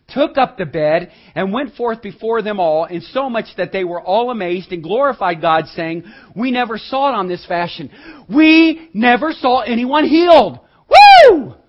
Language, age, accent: English, 40-59, American